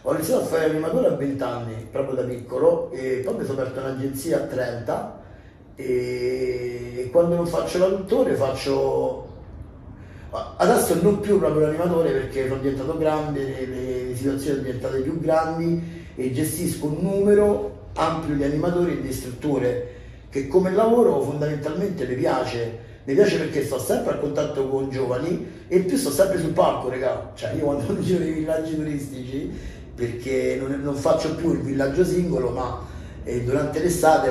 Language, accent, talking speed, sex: Italian, native, 165 wpm, male